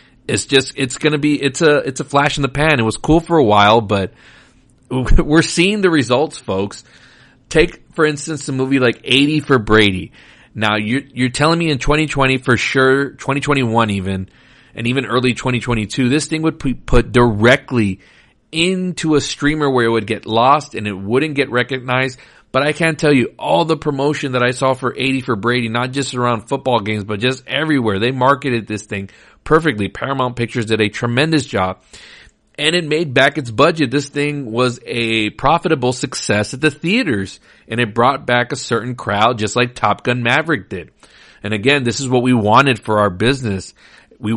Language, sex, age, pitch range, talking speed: English, male, 40-59, 110-145 Hz, 190 wpm